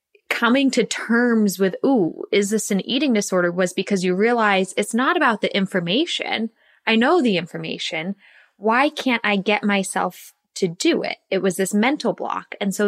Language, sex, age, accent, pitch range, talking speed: English, female, 20-39, American, 195-240 Hz, 175 wpm